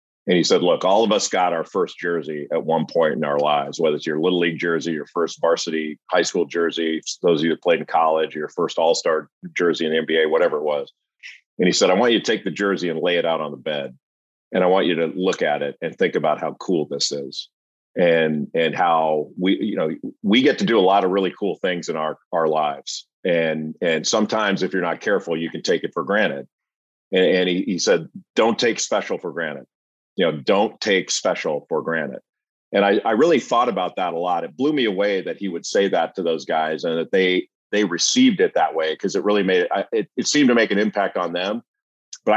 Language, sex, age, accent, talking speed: English, male, 40-59, American, 245 wpm